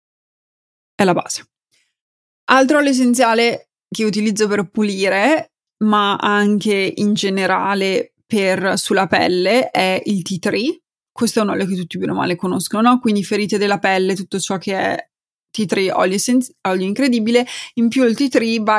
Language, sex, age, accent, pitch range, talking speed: Italian, female, 20-39, native, 195-230 Hz, 155 wpm